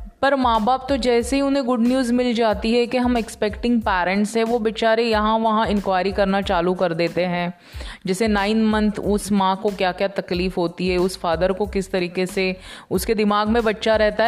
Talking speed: 205 wpm